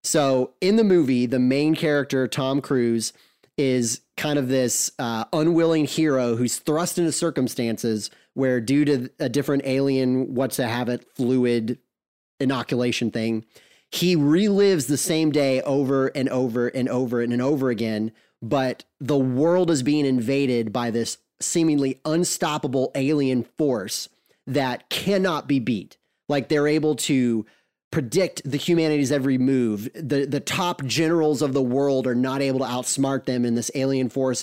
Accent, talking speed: American, 150 wpm